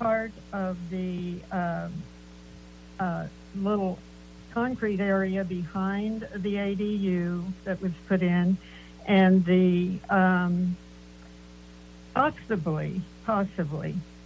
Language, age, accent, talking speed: English, 60-79, American, 85 wpm